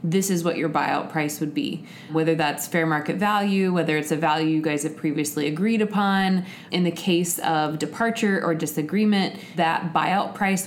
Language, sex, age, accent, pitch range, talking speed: English, female, 20-39, American, 155-190 Hz, 185 wpm